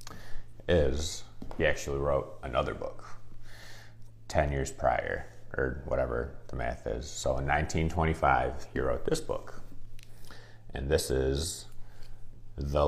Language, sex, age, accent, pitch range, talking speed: English, male, 30-49, American, 70-110 Hz, 115 wpm